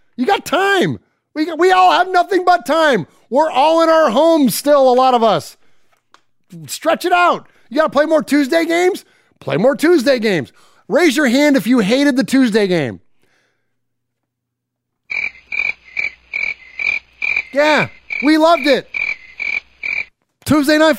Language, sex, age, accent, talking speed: English, male, 30-49, American, 145 wpm